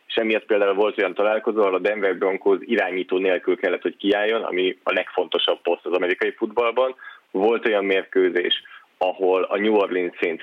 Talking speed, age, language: 165 wpm, 30-49, Hungarian